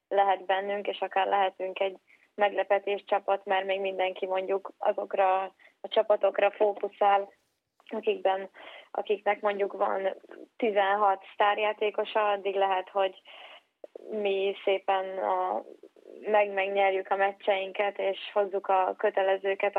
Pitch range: 195-210 Hz